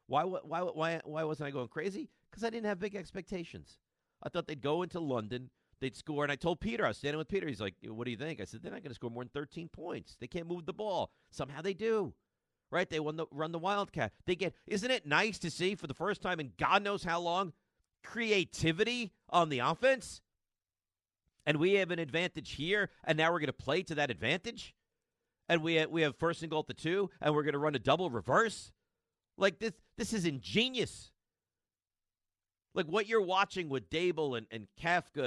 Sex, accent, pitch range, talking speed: male, American, 135-195 Hz, 220 wpm